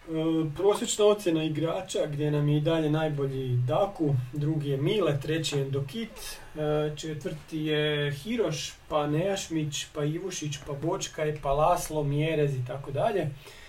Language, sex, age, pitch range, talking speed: Croatian, male, 40-59, 145-170 Hz, 145 wpm